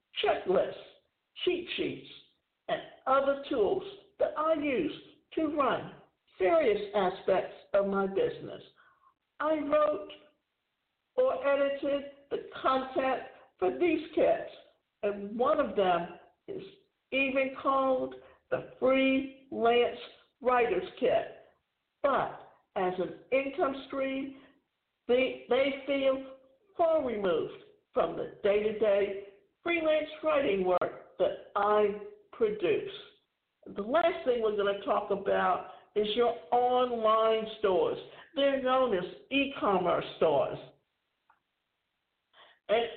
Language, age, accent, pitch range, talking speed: English, 60-79, American, 210-310 Hz, 100 wpm